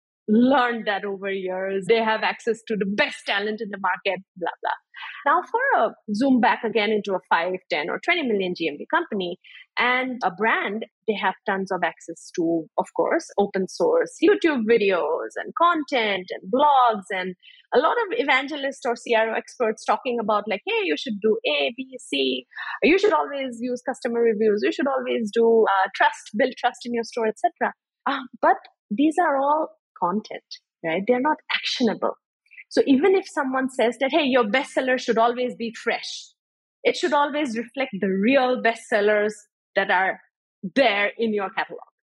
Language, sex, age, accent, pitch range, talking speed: English, female, 30-49, Indian, 205-275 Hz, 175 wpm